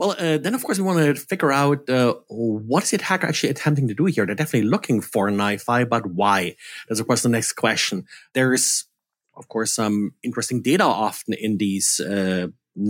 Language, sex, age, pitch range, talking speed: English, male, 30-49, 110-135 Hz, 200 wpm